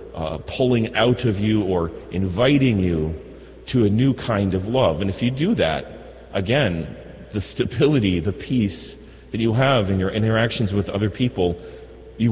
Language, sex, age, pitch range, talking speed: English, male, 40-59, 90-110 Hz, 165 wpm